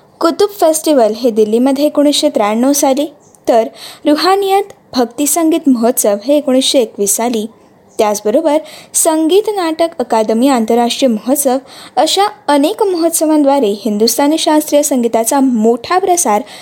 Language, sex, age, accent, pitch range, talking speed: Marathi, female, 20-39, native, 235-320 Hz, 110 wpm